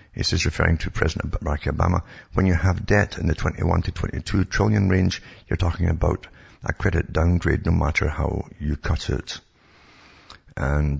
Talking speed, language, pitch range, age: 170 wpm, English, 80-95 Hz, 60-79